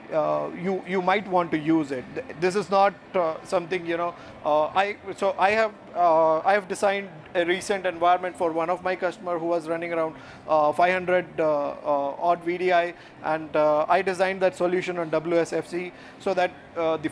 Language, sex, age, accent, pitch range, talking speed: English, male, 30-49, Indian, 165-195 Hz, 190 wpm